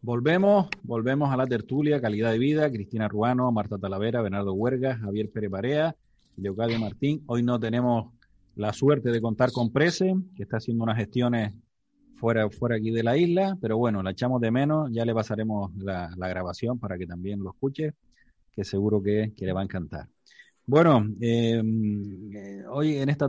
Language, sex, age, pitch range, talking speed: Spanish, male, 30-49, 105-140 Hz, 180 wpm